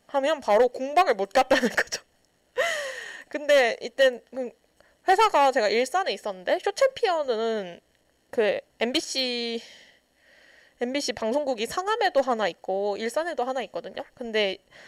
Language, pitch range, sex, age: Korean, 215-310 Hz, female, 20-39